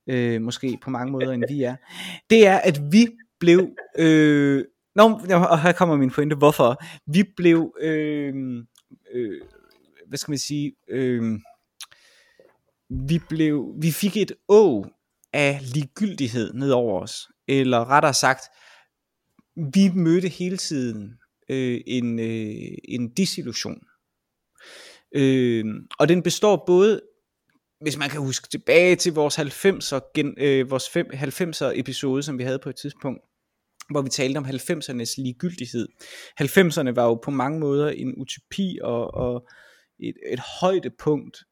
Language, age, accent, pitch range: Danish, 20-39, native, 130-175 Hz